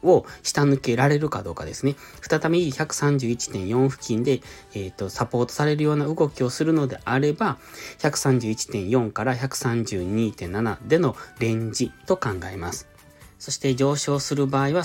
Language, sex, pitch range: Japanese, male, 110-140 Hz